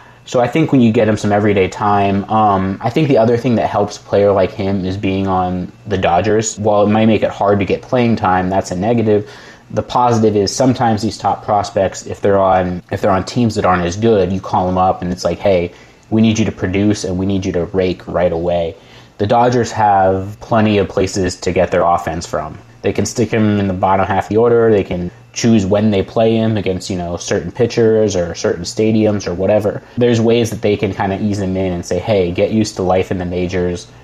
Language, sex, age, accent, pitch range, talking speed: English, male, 20-39, American, 95-115 Hz, 240 wpm